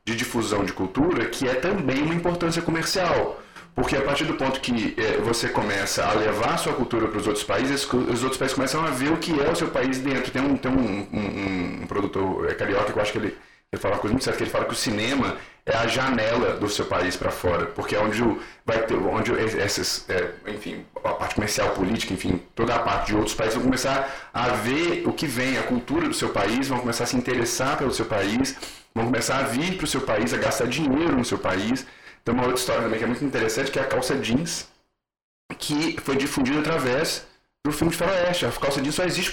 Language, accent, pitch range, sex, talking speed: Portuguese, Brazilian, 115-165 Hz, male, 220 wpm